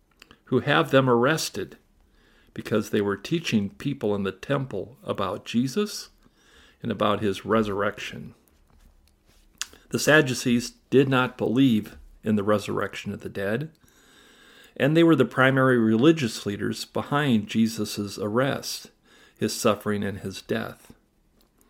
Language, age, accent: English, 50-69, American